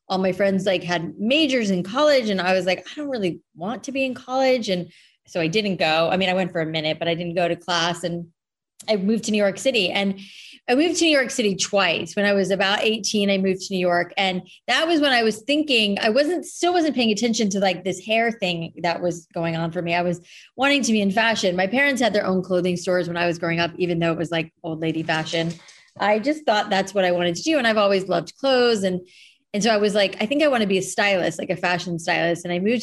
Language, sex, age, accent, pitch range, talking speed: English, female, 30-49, American, 180-225 Hz, 270 wpm